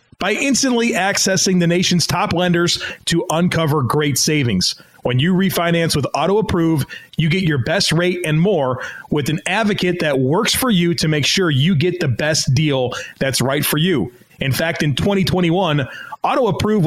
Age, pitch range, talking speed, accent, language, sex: 30-49, 150-190 Hz, 165 wpm, American, English, male